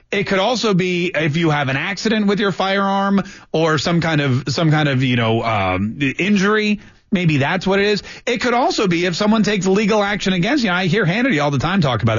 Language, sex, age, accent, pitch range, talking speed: English, male, 30-49, American, 140-195 Hz, 235 wpm